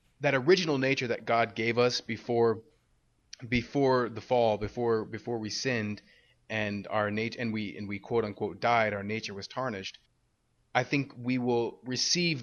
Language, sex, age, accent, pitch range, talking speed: English, male, 20-39, American, 105-130 Hz, 165 wpm